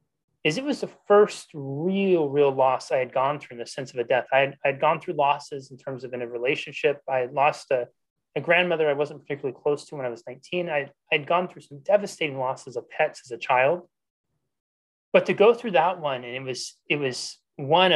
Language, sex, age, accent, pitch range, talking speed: English, male, 30-49, American, 135-180 Hz, 235 wpm